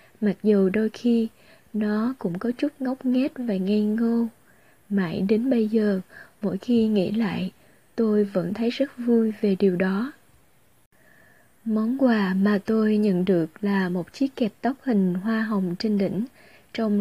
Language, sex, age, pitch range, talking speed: Vietnamese, female, 20-39, 200-235 Hz, 160 wpm